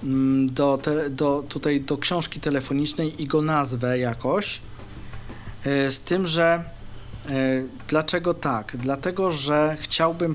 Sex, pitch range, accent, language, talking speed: male, 130-165 Hz, native, Polish, 110 wpm